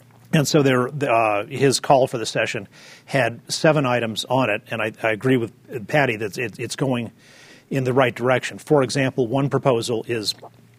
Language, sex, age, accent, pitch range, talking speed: English, male, 40-59, American, 120-140 Hz, 180 wpm